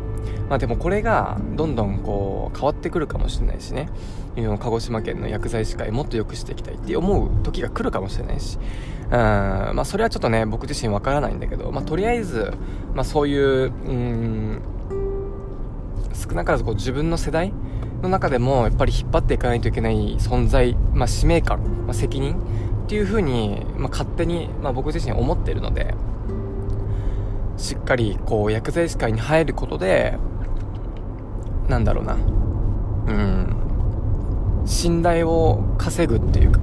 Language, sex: Japanese, male